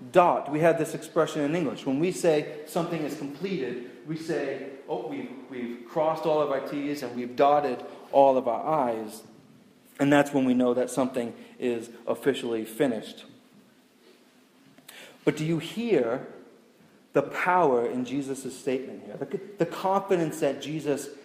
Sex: male